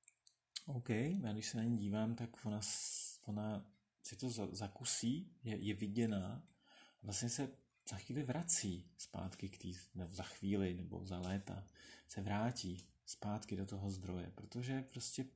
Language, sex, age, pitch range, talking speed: Czech, male, 30-49, 95-125 Hz, 150 wpm